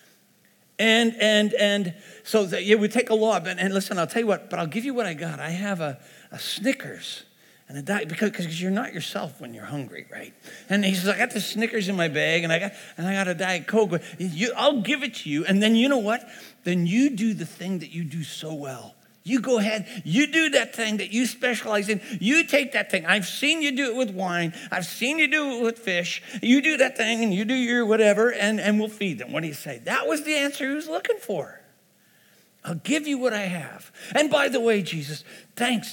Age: 50-69